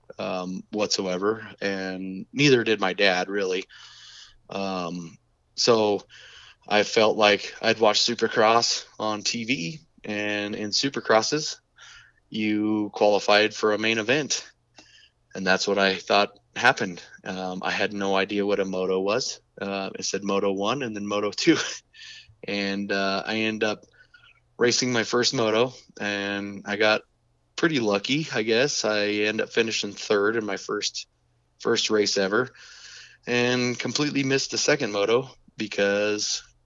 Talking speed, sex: 140 wpm, male